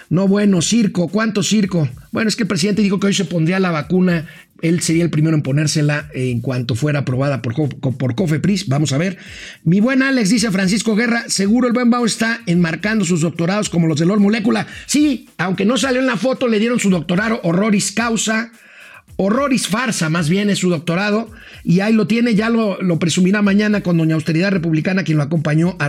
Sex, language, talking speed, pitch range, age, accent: male, Spanish, 205 wpm, 170-225 Hz, 50-69, Mexican